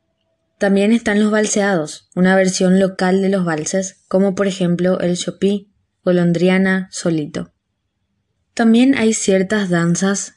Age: 20-39